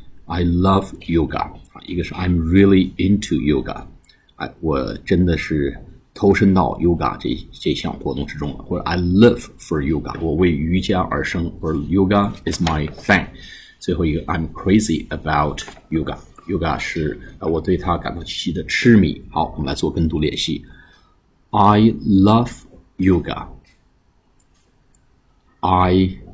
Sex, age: male, 50-69